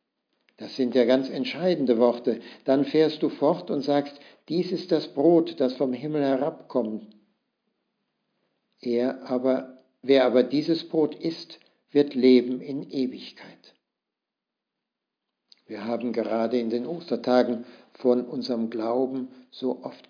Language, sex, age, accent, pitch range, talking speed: German, male, 60-79, German, 125-155 Hz, 125 wpm